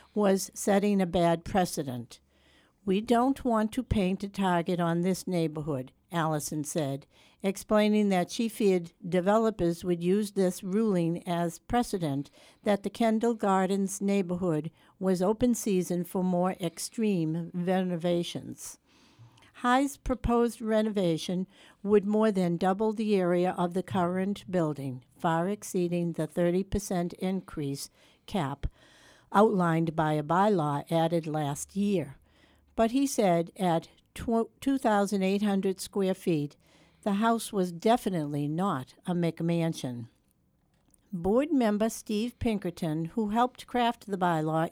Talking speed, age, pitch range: 120 wpm, 60-79, 170-210 Hz